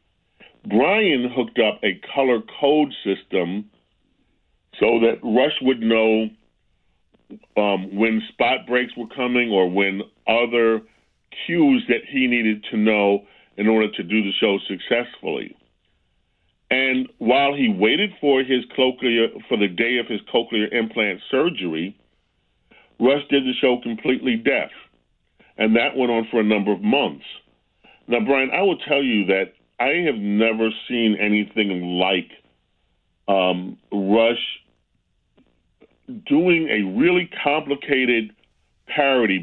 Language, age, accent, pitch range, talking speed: English, 40-59, American, 100-130 Hz, 125 wpm